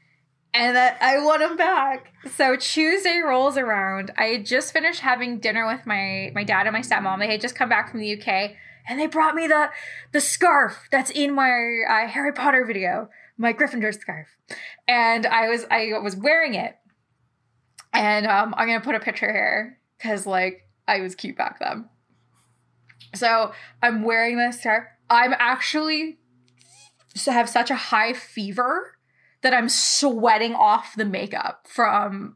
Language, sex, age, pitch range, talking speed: English, female, 20-39, 210-255 Hz, 170 wpm